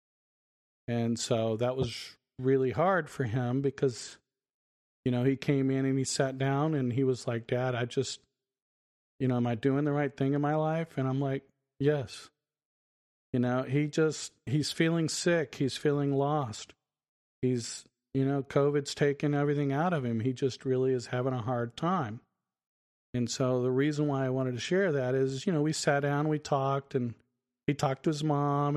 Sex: male